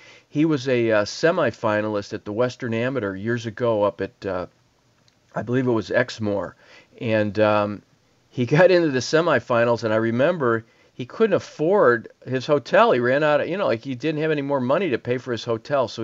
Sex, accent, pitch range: male, American, 105-125 Hz